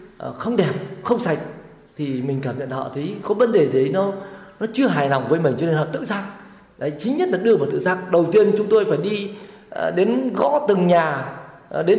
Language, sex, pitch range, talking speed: Vietnamese, male, 150-205 Hz, 225 wpm